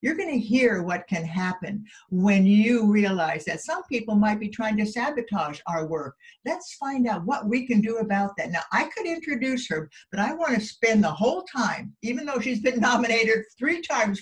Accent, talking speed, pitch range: American, 200 wpm, 175-230 Hz